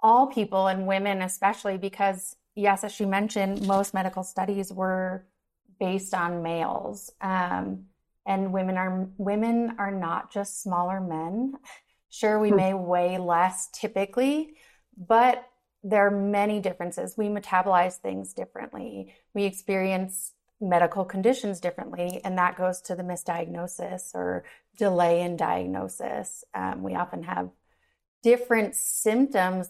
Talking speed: 125 wpm